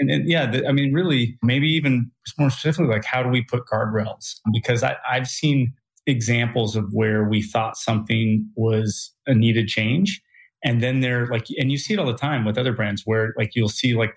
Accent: American